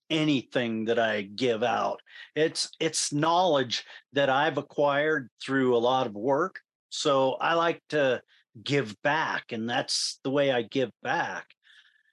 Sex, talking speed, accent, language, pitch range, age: male, 145 wpm, American, English, 130-165 Hz, 40-59